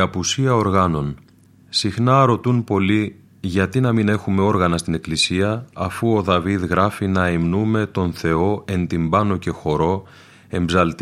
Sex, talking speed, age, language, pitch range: male, 140 wpm, 30-49, Greek, 85-105 Hz